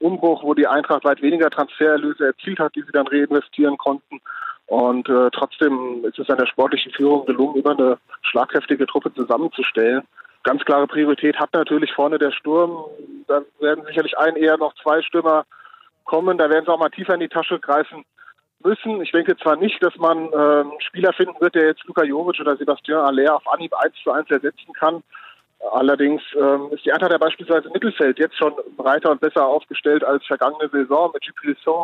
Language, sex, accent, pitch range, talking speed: German, male, German, 145-165 Hz, 190 wpm